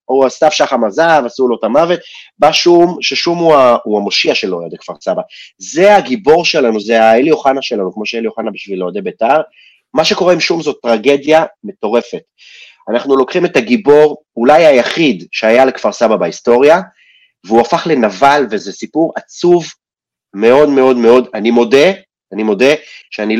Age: 30-49